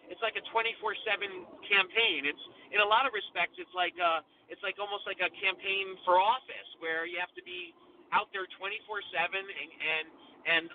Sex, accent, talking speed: male, American, 185 wpm